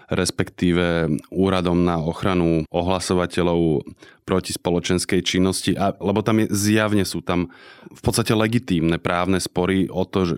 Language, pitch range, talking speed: Slovak, 90-105 Hz, 125 wpm